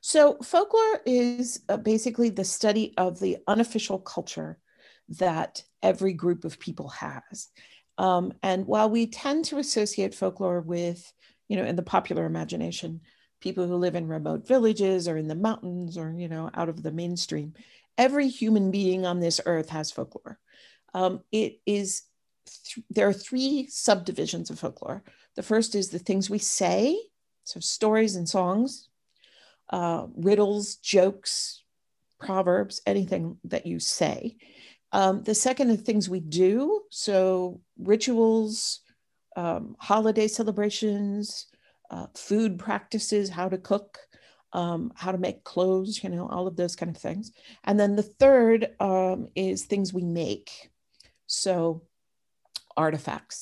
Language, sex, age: English, female, 50-69